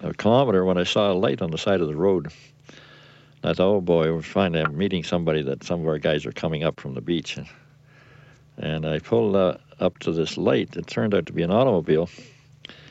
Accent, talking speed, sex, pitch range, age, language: American, 215 wpm, male, 90-135 Hz, 60-79, English